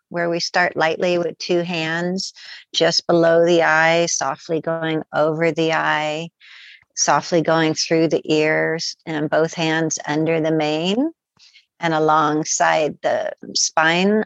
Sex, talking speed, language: female, 130 wpm, English